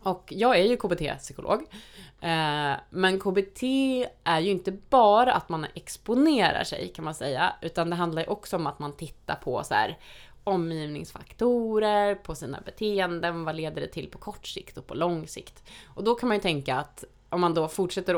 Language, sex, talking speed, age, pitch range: Swedish, female, 190 wpm, 20-39, 145-190 Hz